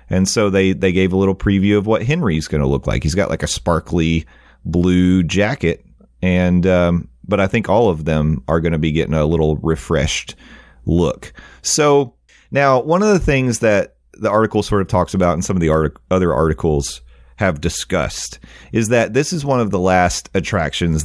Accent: American